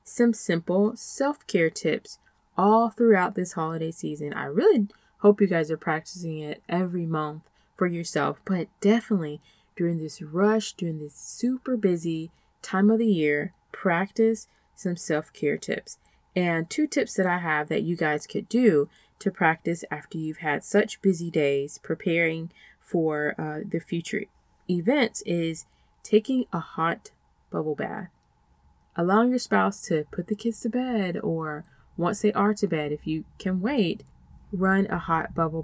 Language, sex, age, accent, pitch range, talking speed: English, female, 20-39, American, 160-215 Hz, 155 wpm